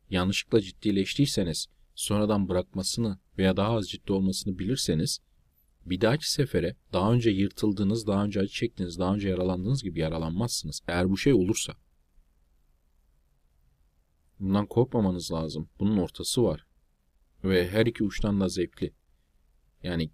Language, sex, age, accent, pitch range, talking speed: Turkish, male, 40-59, native, 80-115 Hz, 125 wpm